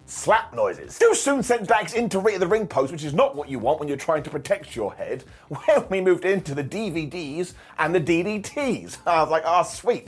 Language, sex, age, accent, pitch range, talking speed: English, male, 30-49, British, 165-240 Hz, 240 wpm